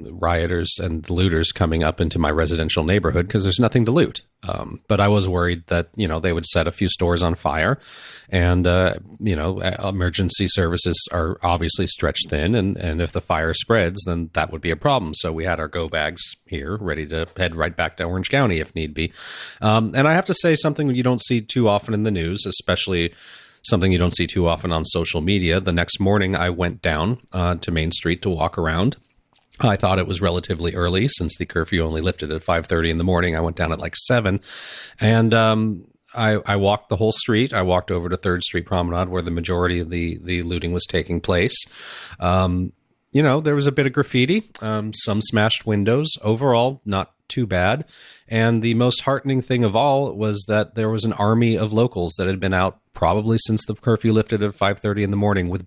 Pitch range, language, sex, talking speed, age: 85-110 Hz, English, male, 220 wpm, 30-49